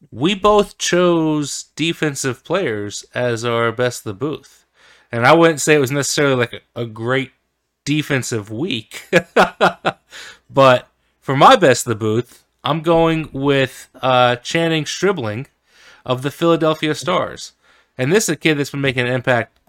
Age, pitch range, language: 30-49, 120-155 Hz, English